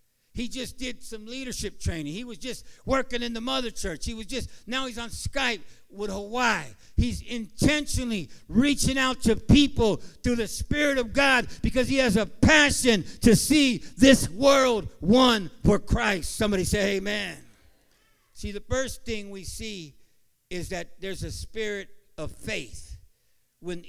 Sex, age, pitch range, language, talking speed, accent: male, 60-79, 205-260 Hz, English, 160 wpm, American